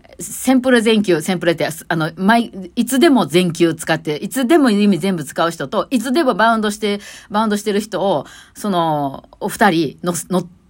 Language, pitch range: Japanese, 165-235 Hz